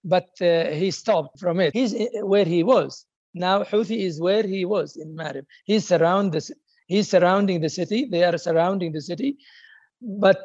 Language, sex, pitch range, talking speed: English, male, 185-235 Hz, 180 wpm